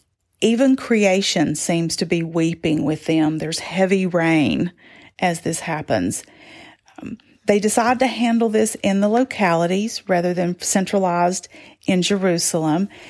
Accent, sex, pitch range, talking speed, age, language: American, female, 165-210 Hz, 130 wpm, 40-59, English